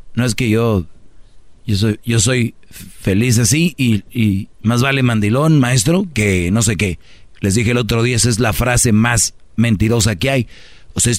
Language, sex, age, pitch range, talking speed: Spanish, male, 40-59, 110-135 Hz, 180 wpm